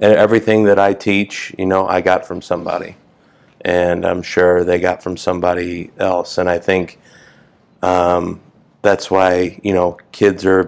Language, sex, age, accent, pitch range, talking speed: English, male, 30-49, American, 90-100 Hz, 155 wpm